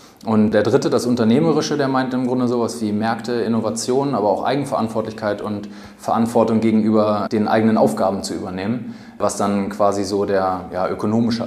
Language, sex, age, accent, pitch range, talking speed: German, male, 20-39, German, 105-115 Hz, 155 wpm